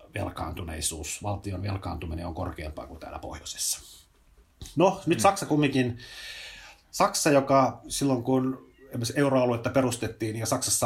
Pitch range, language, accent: 100-125 Hz, Finnish, native